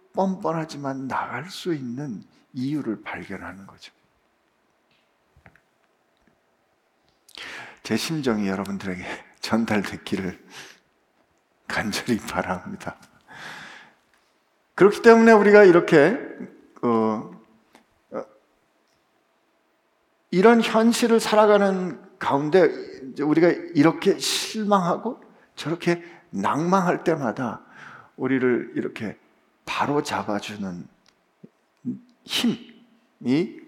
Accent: native